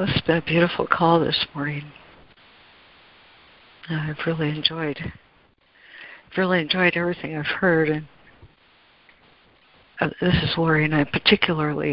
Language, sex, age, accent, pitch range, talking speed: English, female, 60-79, American, 145-170 Hz, 105 wpm